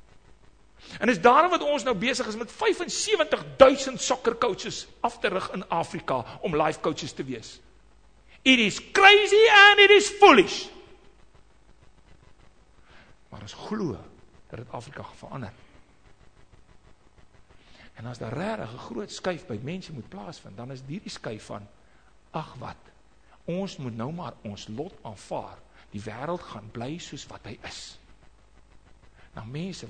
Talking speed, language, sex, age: 135 wpm, English, male, 60-79